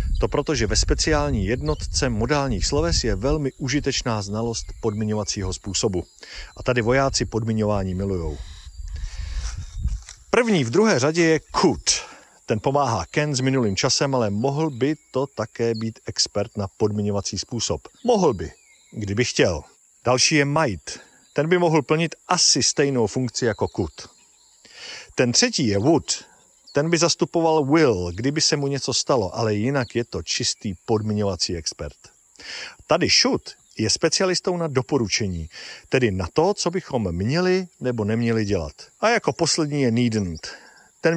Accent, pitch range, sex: native, 105-155 Hz, male